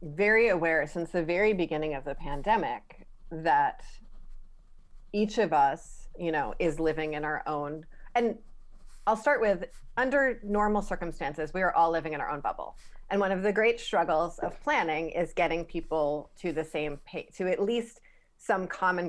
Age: 30-49